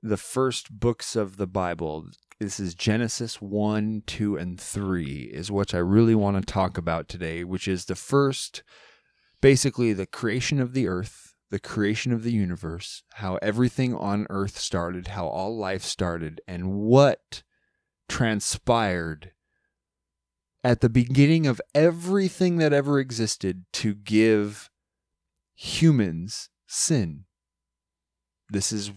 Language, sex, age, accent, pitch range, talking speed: English, male, 30-49, American, 95-115 Hz, 130 wpm